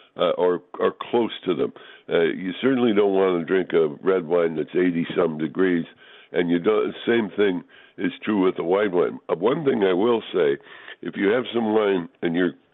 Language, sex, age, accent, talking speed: English, female, 60-79, American, 205 wpm